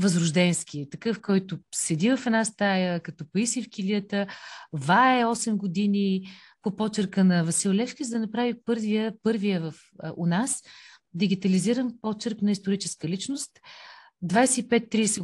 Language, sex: Bulgarian, female